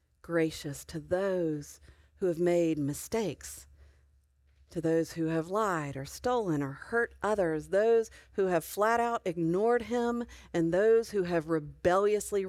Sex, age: female, 40-59